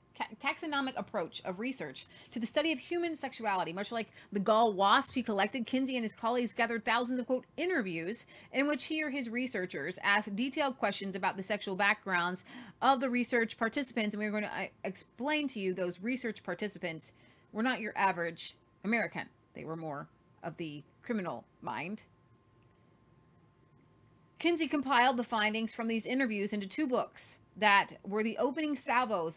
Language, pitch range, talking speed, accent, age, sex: English, 175-245 Hz, 165 wpm, American, 30-49, female